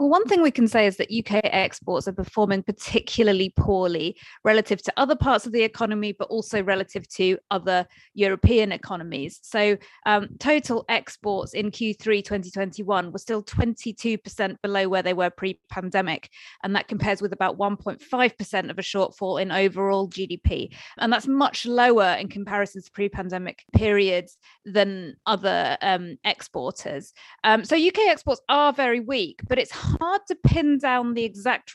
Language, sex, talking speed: English, female, 155 wpm